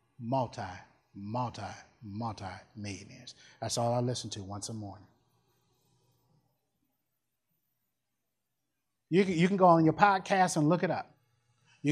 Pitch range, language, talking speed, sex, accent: 110-140 Hz, English, 120 wpm, male, American